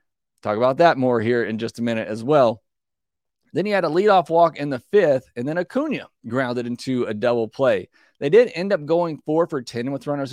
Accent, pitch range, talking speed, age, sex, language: American, 115-140 Hz, 220 wpm, 30-49, male, English